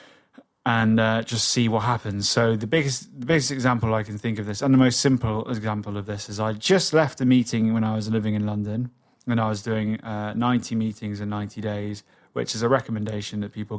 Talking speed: 225 wpm